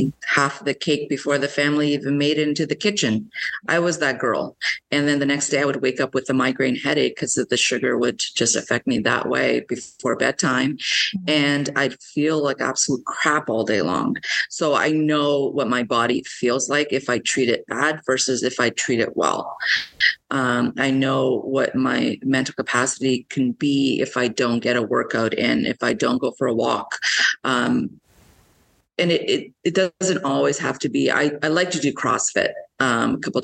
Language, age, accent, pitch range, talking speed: English, 30-49, American, 130-155 Hz, 195 wpm